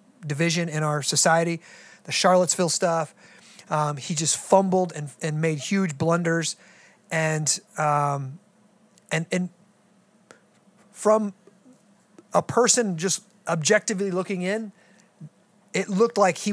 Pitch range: 160-205 Hz